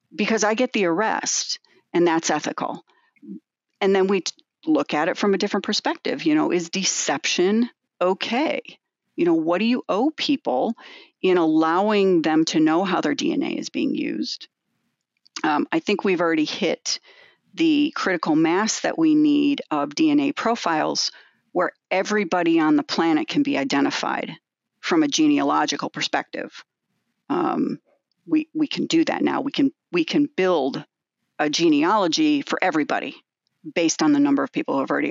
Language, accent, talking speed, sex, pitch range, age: English, American, 155 wpm, female, 190-310 Hz, 40-59